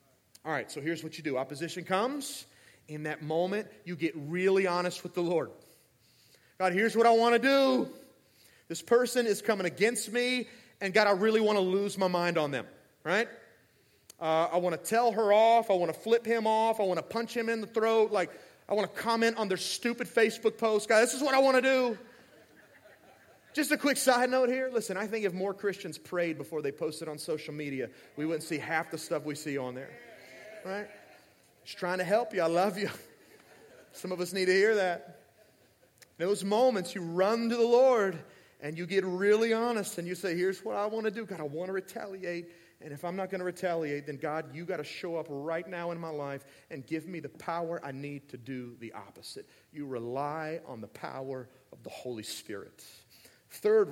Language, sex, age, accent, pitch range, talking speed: English, male, 30-49, American, 155-220 Hz, 215 wpm